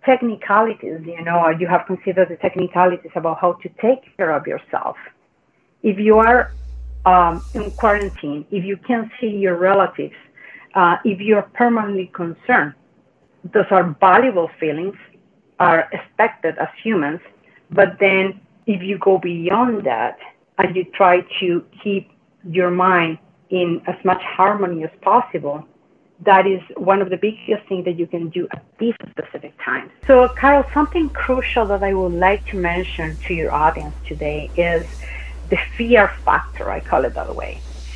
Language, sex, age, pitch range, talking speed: English, female, 40-59, 170-210 Hz, 155 wpm